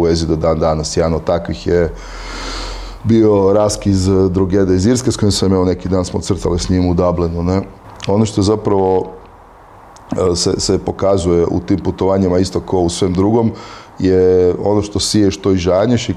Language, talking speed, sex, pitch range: Croatian, 180 wpm, male, 85-95 Hz